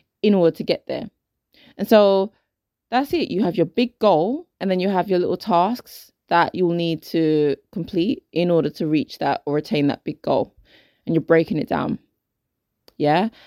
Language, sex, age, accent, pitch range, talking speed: English, female, 20-39, British, 155-210 Hz, 185 wpm